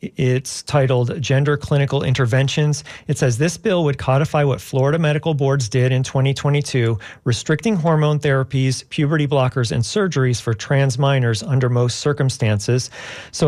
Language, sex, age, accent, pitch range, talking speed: English, male, 40-59, American, 125-150 Hz, 140 wpm